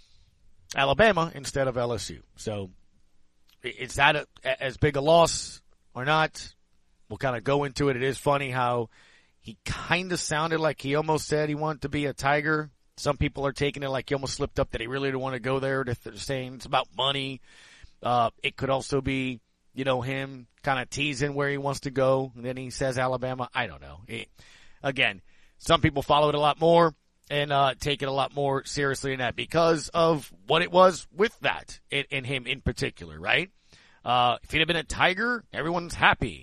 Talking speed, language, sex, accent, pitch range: 205 wpm, English, male, American, 125-150 Hz